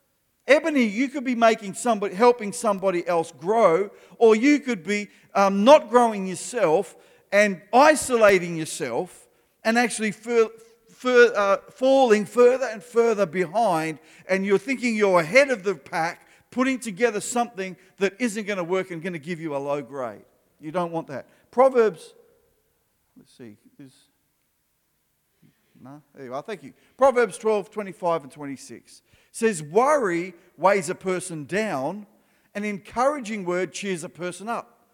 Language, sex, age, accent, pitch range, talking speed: English, male, 50-69, Australian, 180-245 Hz, 145 wpm